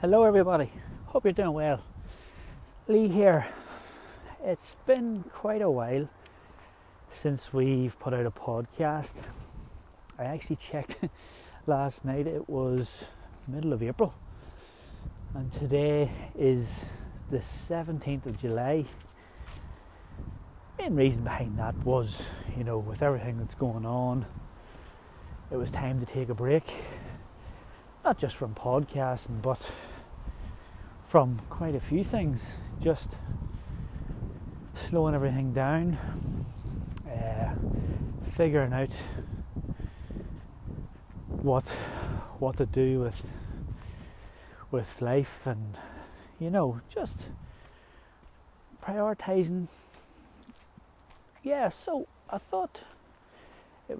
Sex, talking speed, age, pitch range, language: male, 100 wpm, 30-49, 100-145 Hz, English